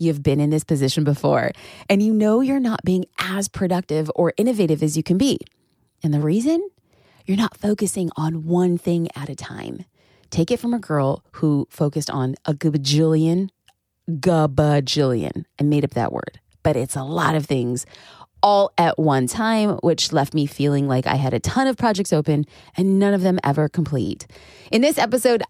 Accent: American